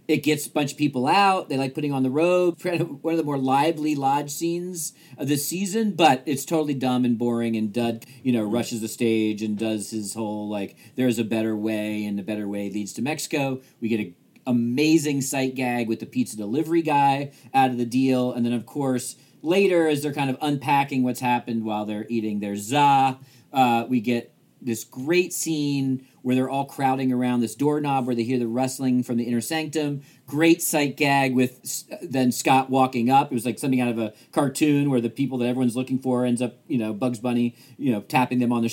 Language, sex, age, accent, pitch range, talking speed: English, male, 40-59, American, 115-145 Hz, 220 wpm